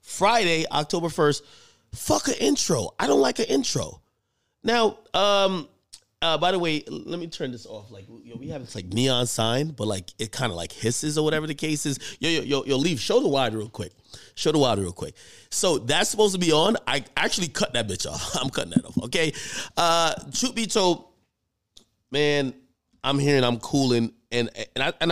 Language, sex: English, male